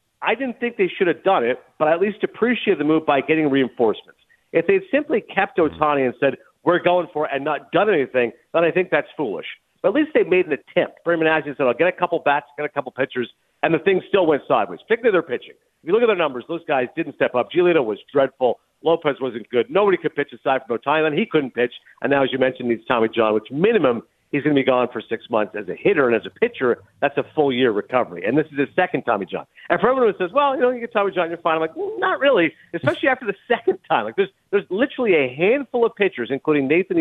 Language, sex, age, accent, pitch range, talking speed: English, male, 50-69, American, 145-230 Hz, 265 wpm